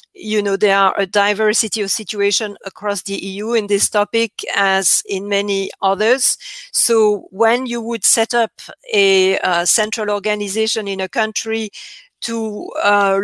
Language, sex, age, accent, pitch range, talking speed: English, female, 50-69, French, 200-240 Hz, 150 wpm